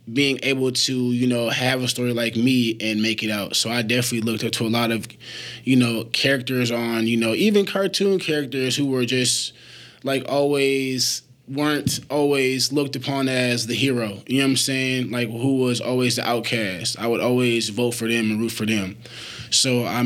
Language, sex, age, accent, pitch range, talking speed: English, male, 20-39, American, 115-130 Hz, 200 wpm